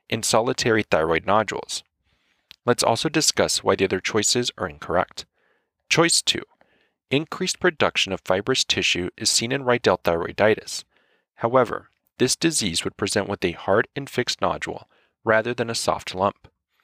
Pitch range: 100-135 Hz